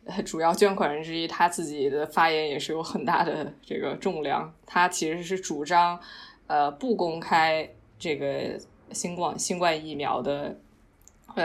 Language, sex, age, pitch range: Chinese, female, 20-39, 155-195 Hz